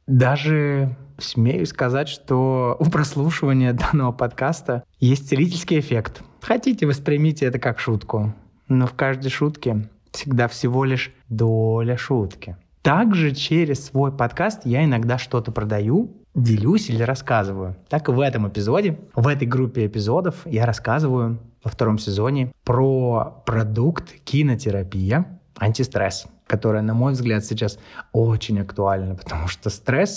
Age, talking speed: 20-39, 125 wpm